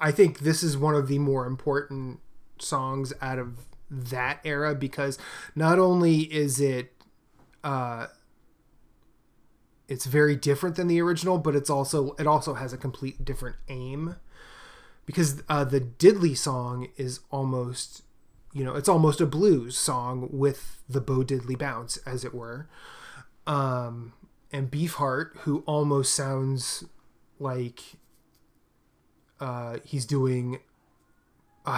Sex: male